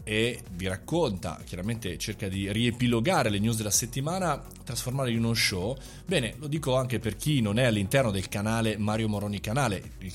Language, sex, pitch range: Italian, male, 100-130 Hz